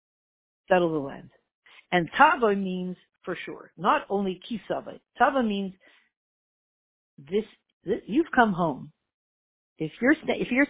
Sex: female